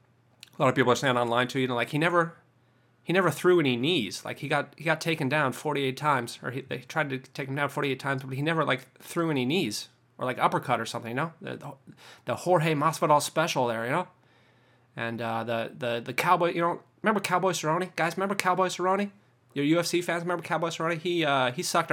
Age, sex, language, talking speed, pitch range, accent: 30-49, male, English, 235 wpm, 125-160 Hz, American